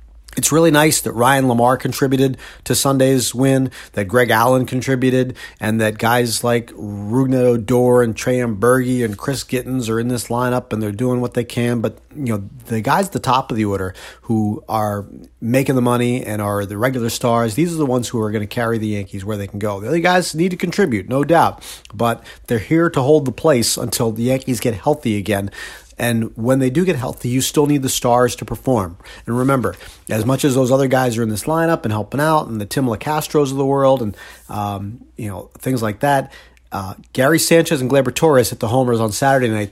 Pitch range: 110-130 Hz